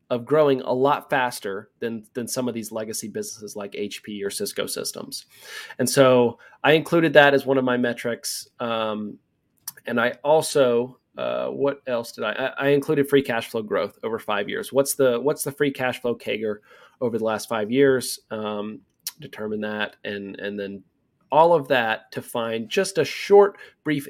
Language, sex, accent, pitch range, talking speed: English, male, American, 110-140 Hz, 185 wpm